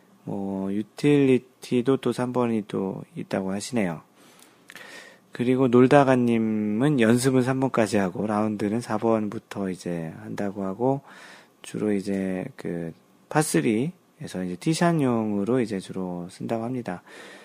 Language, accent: Korean, native